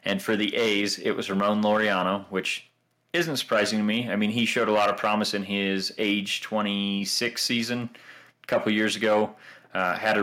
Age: 30-49